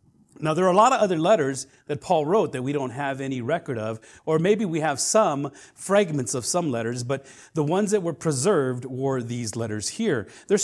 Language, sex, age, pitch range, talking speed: English, male, 40-59, 125-175 Hz, 215 wpm